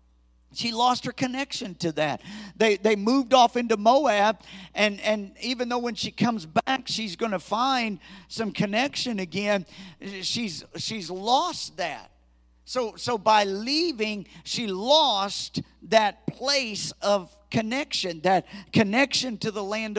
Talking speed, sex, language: 140 wpm, male, English